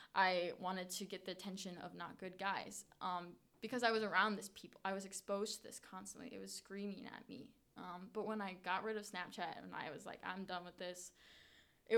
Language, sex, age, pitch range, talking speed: English, female, 20-39, 185-230 Hz, 225 wpm